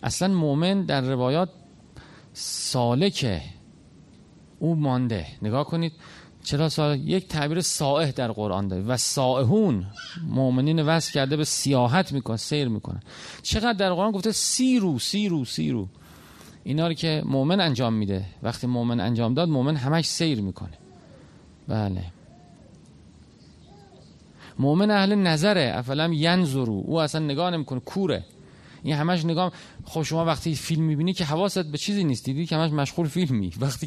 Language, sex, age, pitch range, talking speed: Persian, male, 40-59, 125-170 Hz, 135 wpm